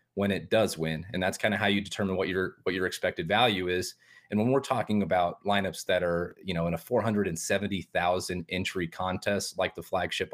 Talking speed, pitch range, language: 230 wpm, 95-105 Hz, English